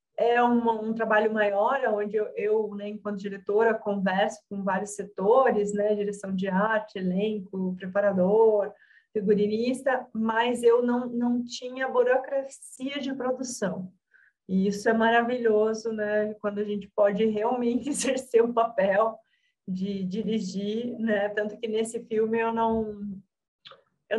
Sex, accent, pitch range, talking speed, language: female, Brazilian, 195-225 Hz, 135 wpm, Portuguese